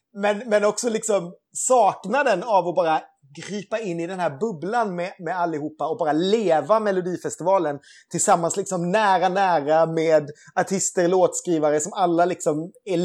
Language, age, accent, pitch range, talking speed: Swedish, 30-49, native, 155-200 Hz, 145 wpm